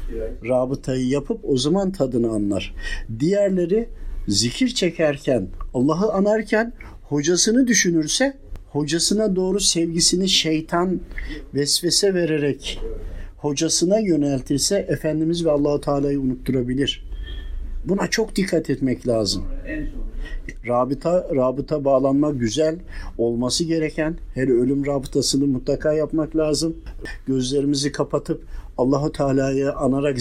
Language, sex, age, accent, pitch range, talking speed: Turkish, male, 50-69, native, 120-165 Hz, 95 wpm